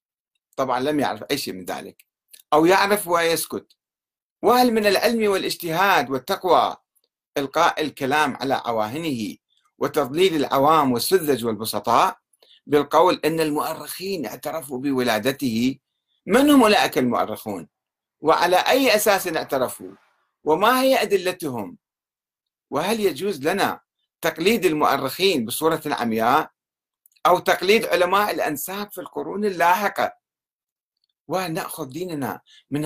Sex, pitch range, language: male, 140-205 Hz, Arabic